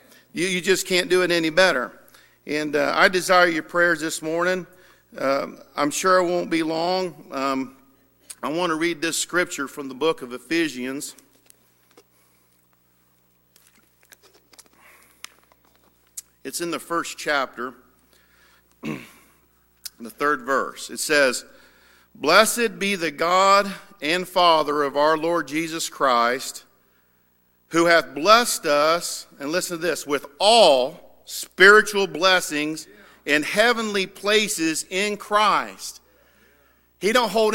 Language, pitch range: English, 140-195 Hz